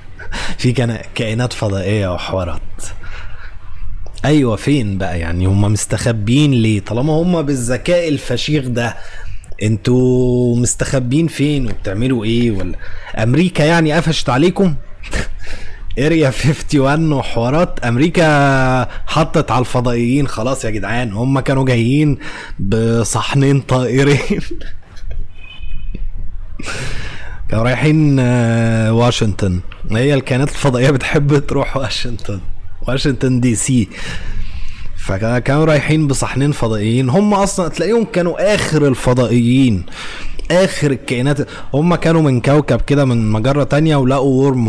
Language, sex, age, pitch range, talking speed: Arabic, male, 20-39, 100-140 Hz, 100 wpm